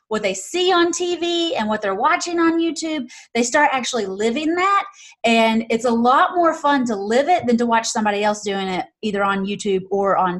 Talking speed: 215 wpm